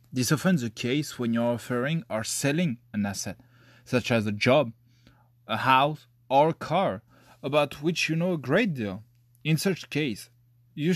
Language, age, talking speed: English, 20-39, 170 wpm